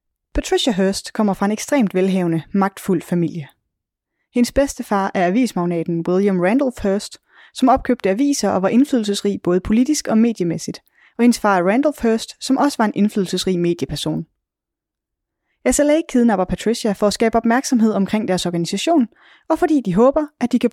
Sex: female